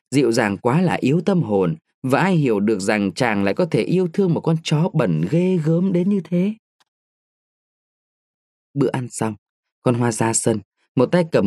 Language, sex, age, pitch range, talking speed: Vietnamese, male, 20-39, 125-170 Hz, 195 wpm